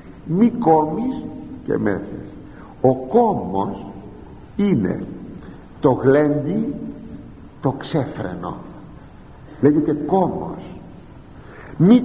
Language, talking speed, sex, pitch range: Greek, 70 wpm, male, 110-165 Hz